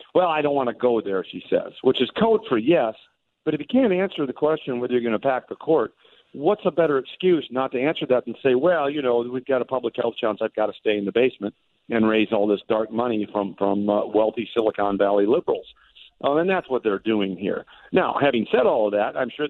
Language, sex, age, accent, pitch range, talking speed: English, male, 50-69, American, 110-155 Hz, 250 wpm